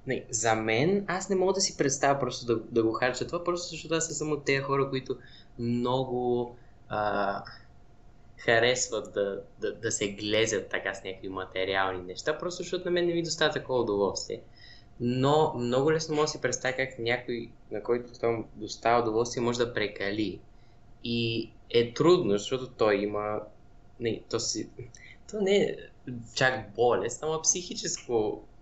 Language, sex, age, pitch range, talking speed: Bulgarian, male, 20-39, 105-140 Hz, 165 wpm